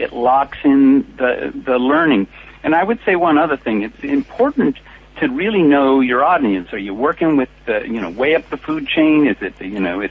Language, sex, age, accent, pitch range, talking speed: English, male, 60-79, American, 120-155 Hz, 225 wpm